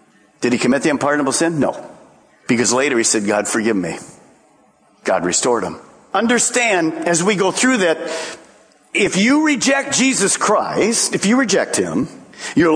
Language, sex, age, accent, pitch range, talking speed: English, male, 50-69, American, 145-235 Hz, 155 wpm